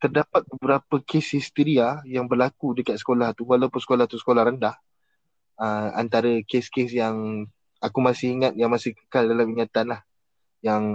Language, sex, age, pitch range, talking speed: Malay, male, 20-39, 110-130 Hz, 155 wpm